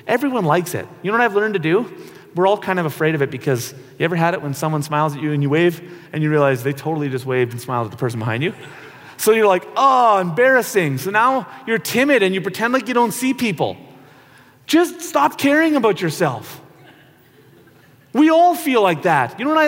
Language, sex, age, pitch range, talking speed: English, male, 30-49, 140-225 Hz, 225 wpm